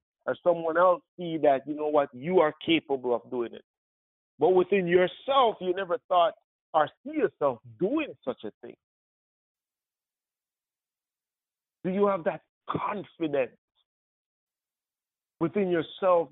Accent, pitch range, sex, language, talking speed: American, 120-180 Hz, male, English, 125 wpm